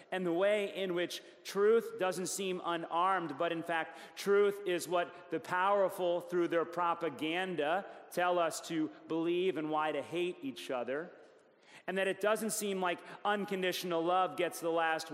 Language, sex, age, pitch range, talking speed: English, male, 40-59, 160-205 Hz, 165 wpm